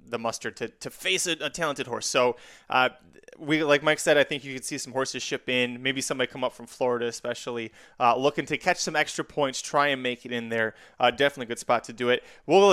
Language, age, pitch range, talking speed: English, 20-39, 125-175 Hz, 250 wpm